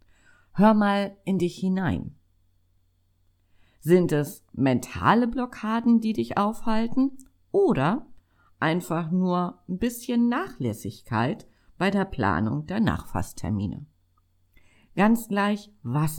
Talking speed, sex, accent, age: 95 wpm, female, German, 50-69